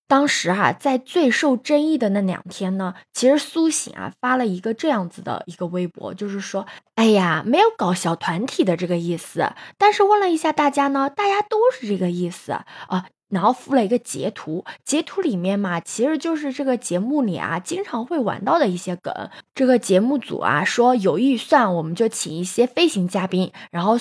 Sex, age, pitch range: female, 20-39, 190-295 Hz